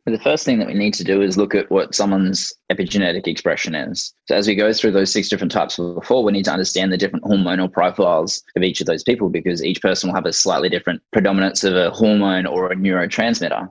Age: 20-39